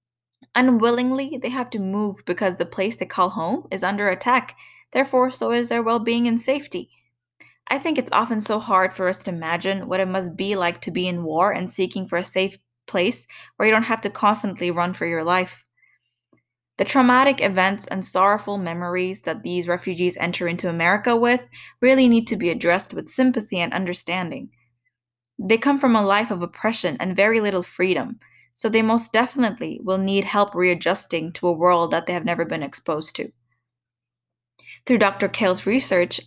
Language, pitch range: English, 175-220 Hz